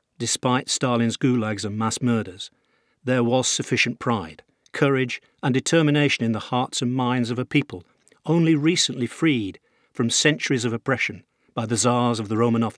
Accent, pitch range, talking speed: British, 110-135 Hz, 160 wpm